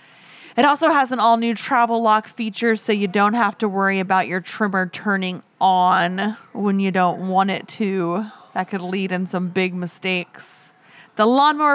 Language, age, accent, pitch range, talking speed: English, 30-49, American, 190-230 Hz, 180 wpm